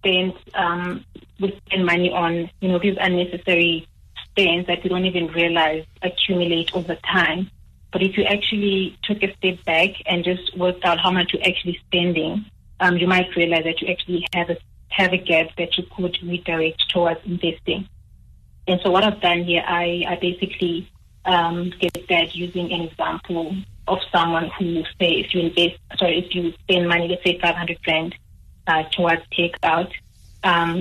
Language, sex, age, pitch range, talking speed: English, female, 30-49, 170-185 Hz, 175 wpm